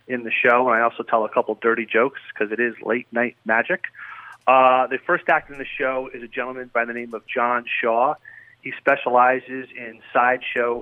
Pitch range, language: 115-130 Hz, English